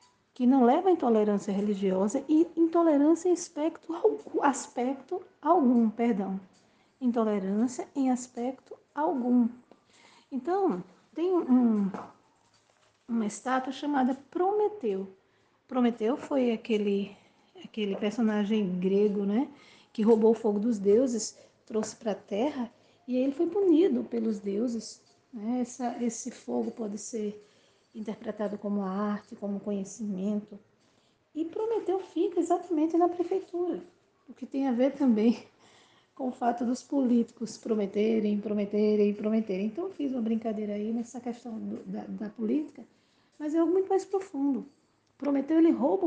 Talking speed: 130 wpm